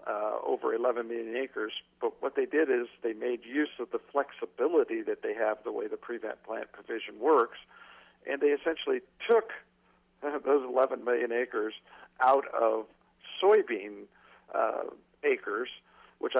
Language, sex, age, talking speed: English, male, 50-69, 145 wpm